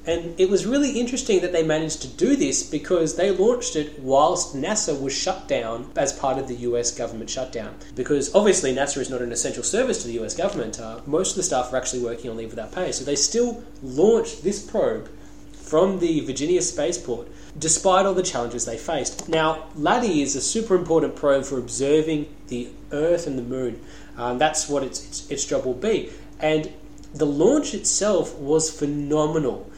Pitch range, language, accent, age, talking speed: 135-170 Hz, English, Australian, 20-39, 195 wpm